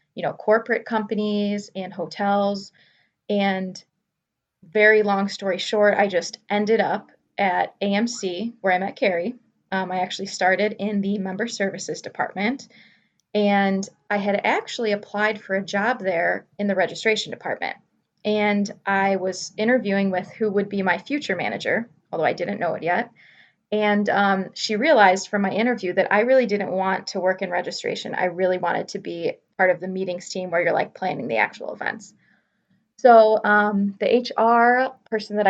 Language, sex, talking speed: English, female, 165 wpm